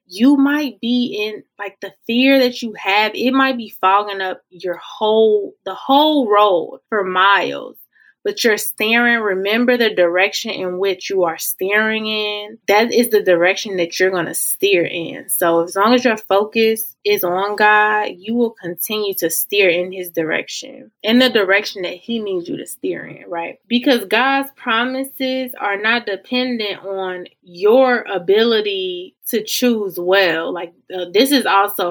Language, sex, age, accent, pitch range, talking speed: English, female, 20-39, American, 185-240 Hz, 165 wpm